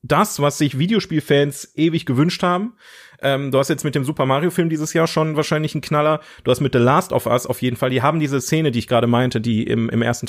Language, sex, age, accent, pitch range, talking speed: German, male, 30-49, German, 110-135 Hz, 245 wpm